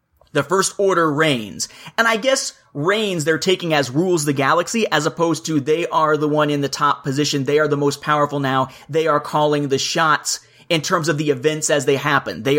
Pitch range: 150-200 Hz